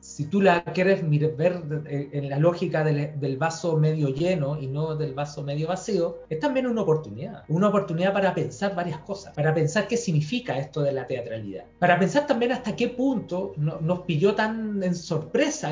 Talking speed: 185 wpm